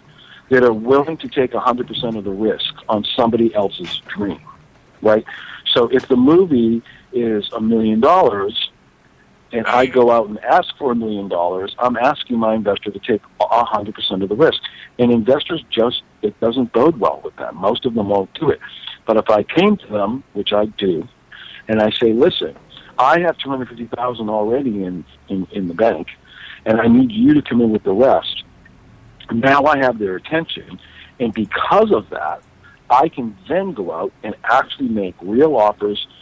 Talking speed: 180 wpm